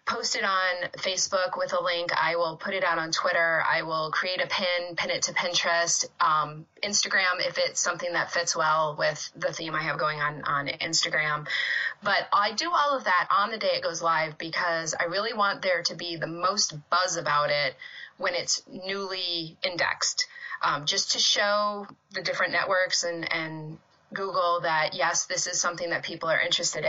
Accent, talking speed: American, 195 wpm